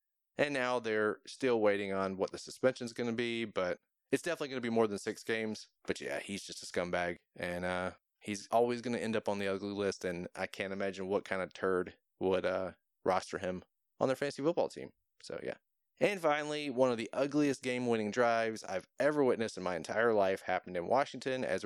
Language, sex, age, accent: English, male, 20-39, American